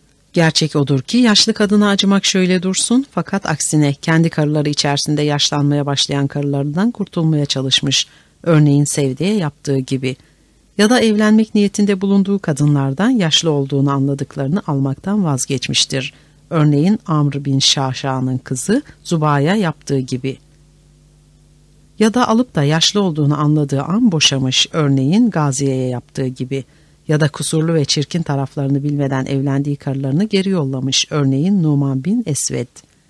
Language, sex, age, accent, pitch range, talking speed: Turkish, female, 60-79, native, 140-180 Hz, 125 wpm